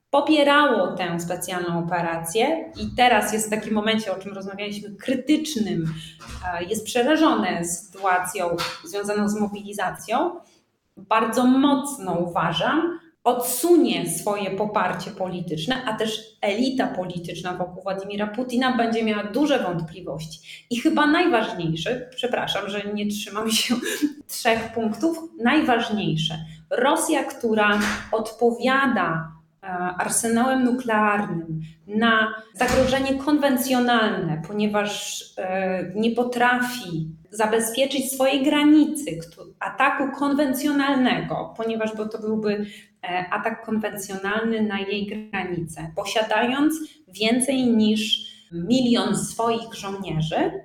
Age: 20-39